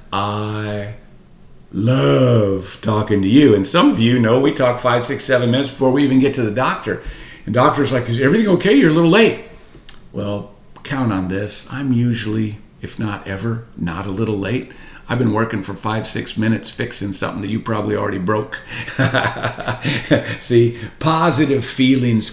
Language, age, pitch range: English, 50-69, 105-140 Hz